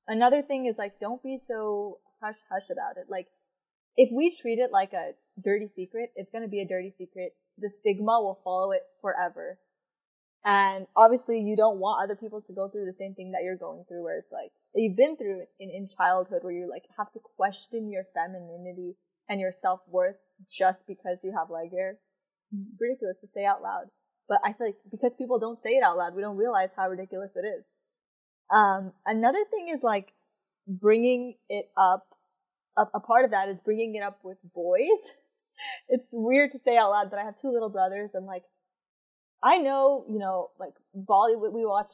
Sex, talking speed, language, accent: female, 200 wpm, English, American